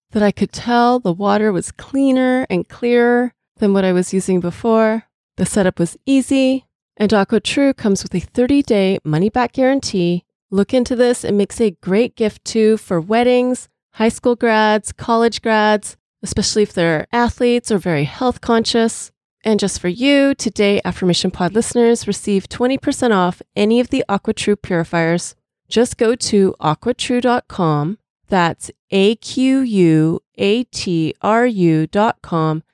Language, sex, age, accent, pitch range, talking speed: English, female, 30-49, American, 185-240 Hz, 145 wpm